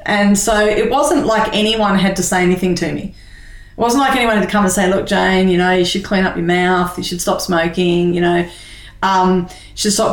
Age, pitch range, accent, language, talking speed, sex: 30-49, 175-200 Hz, Australian, English, 245 wpm, female